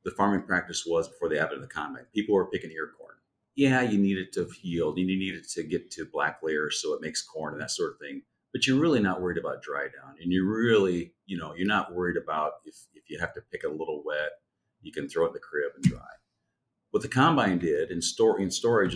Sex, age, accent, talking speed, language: male, 40-59, American, 255 wpm, English